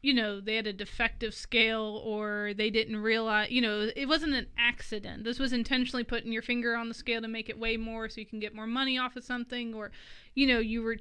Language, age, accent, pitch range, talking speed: English, 20-39, American, 215-245 Hz, 245 wpm